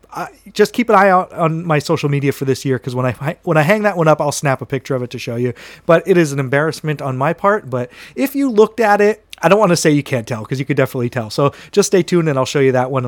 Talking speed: 310 wpm